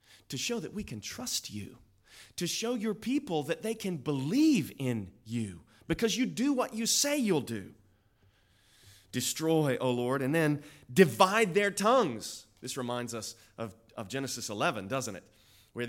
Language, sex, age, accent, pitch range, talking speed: English, male, 30-49, American, 110-160 Hz, 165 wpm